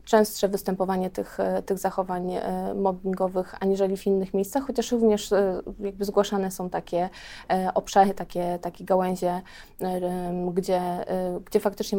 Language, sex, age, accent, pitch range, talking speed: Polish, female, 20-39, native, 185-205 Hz, 115 wpm